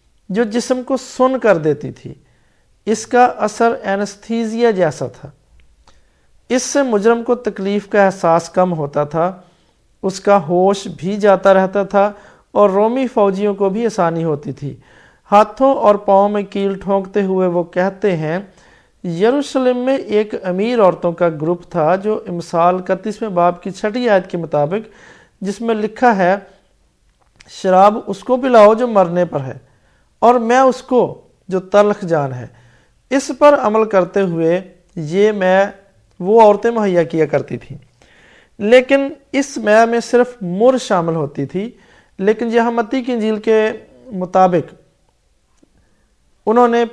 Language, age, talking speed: English, 50-69, 135 wpm